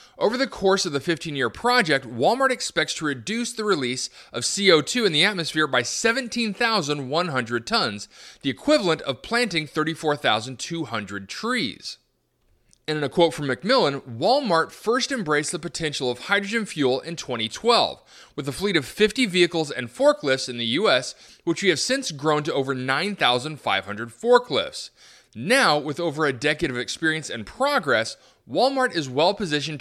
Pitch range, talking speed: 130-200 Hz, 150 wpm